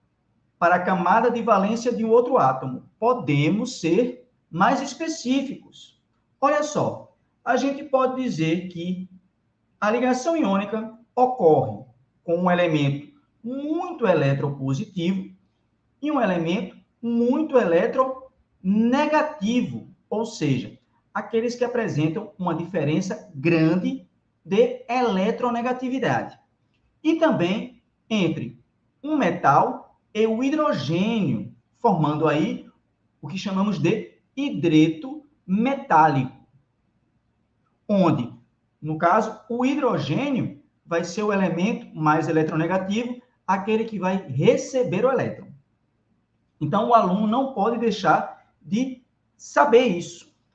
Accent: Brazilian